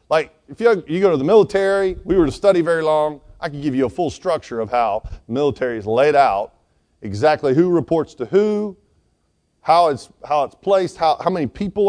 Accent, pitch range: American, 115-170 Hz